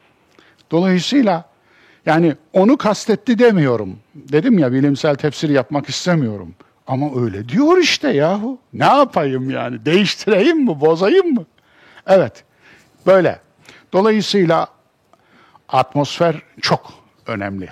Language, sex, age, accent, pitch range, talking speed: Turkish, male, 50-69, native, 125-190 Hz, 100 wpm